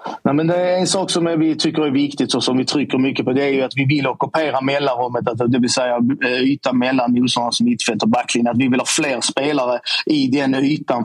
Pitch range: 125-150 Hz